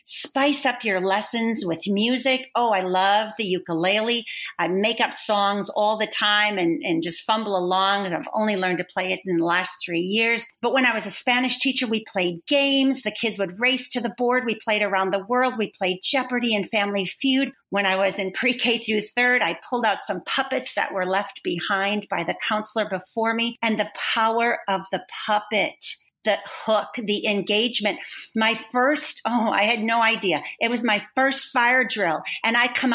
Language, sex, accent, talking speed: English, female, American, 200 wpm